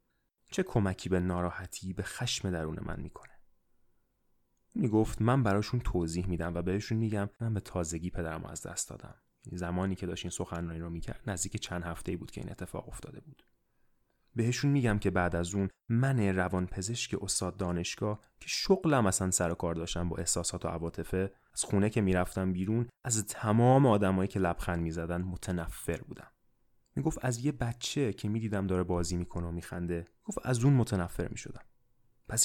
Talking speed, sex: 170 wpm, male